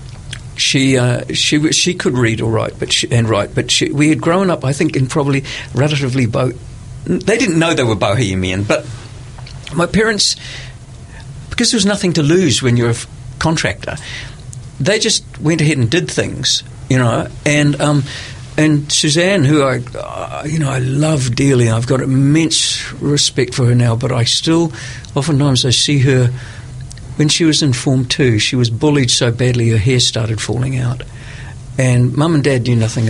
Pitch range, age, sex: 120-145 Hz, 50-69, male